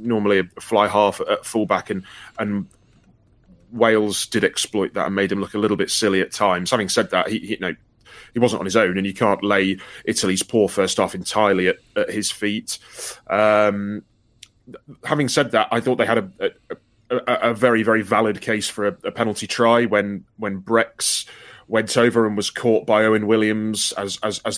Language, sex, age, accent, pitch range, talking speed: English, male, 20-39, British, 100-115 Hz, 205 wpm